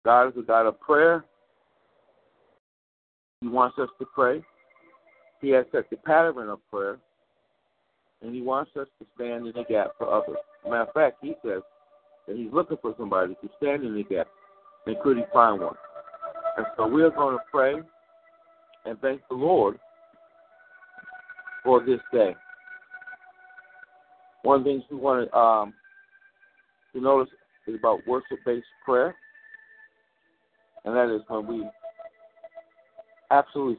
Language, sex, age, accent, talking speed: English, male, 60-79, American, 145 wpm